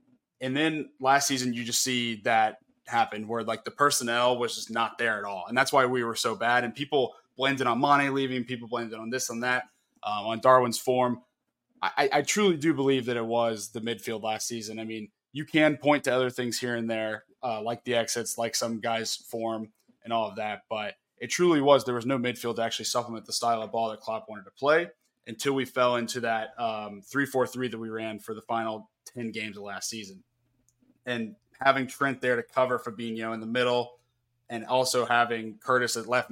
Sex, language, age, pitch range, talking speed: male, English, 20-39, 115-130 Hz, 220 wpm